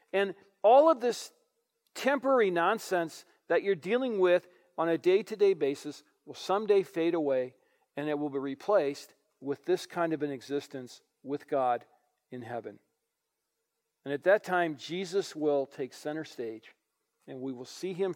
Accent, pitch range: American, 140-195 Hz